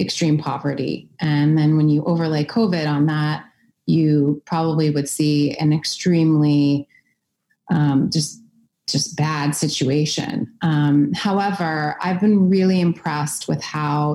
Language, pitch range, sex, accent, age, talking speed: English, 145-165 Hz, female, American, 30-49, 125 wpm